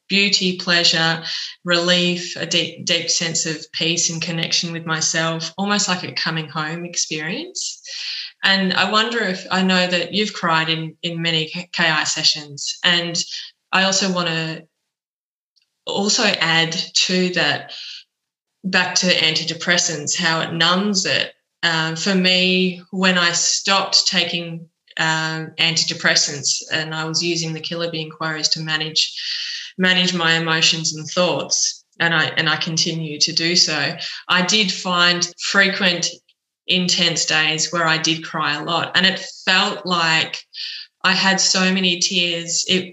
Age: 20-39